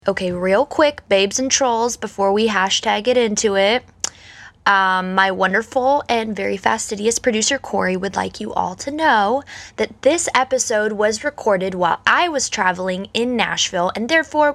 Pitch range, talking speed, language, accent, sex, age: 190-270 Hz, 160 wpm, English, American, female, 20-39